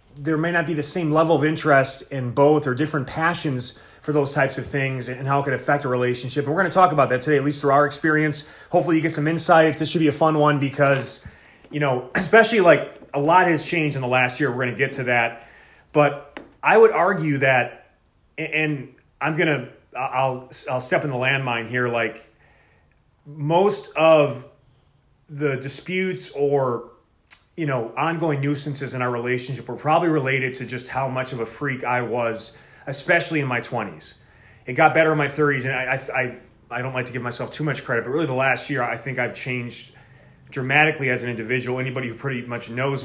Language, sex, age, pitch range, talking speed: English, male, 30-49, 125-150 Hz, 210 wpm